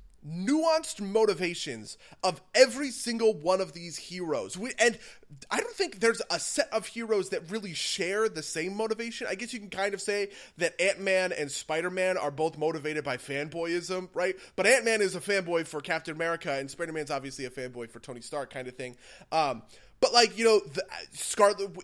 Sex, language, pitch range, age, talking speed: male, English, 155-230 Hz, 20-39, 190 wpm